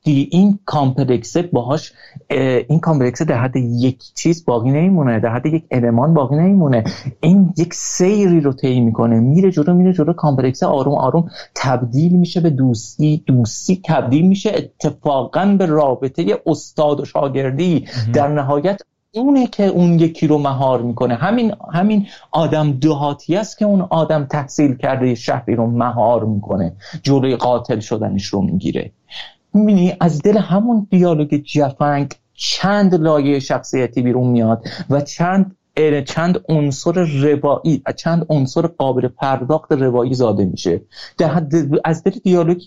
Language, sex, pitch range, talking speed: Persian, male, 130-175 Hz, 140 wpm